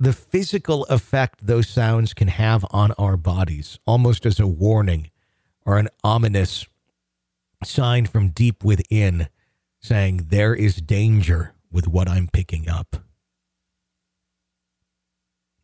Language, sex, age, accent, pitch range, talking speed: English, male, 40-59, American, 90-130 Hz, 120 wpm